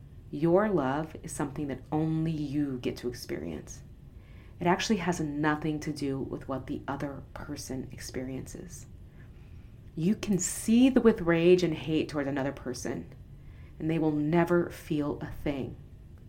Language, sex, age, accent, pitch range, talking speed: English, female, 30-49, American, 125-160 Hz, 145 wpm